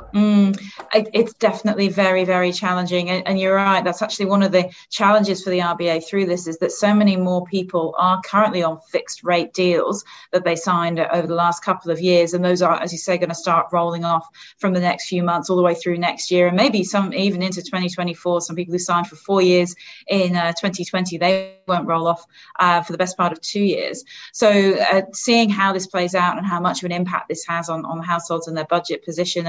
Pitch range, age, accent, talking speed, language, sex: 170-195 Hz, 30-49, British, 230 wpm, English, female